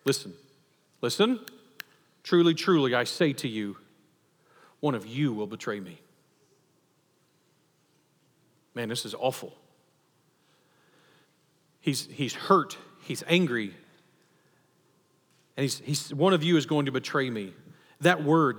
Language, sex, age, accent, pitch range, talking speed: English, male, 40-59, American, 135-170 Hz, 115 wpm